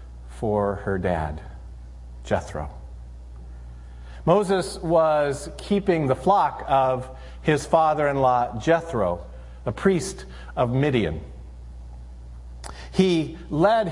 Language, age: English, 50-69